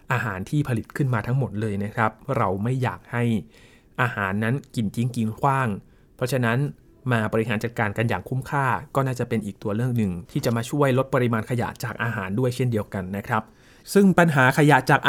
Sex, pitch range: male, 115-150 Hz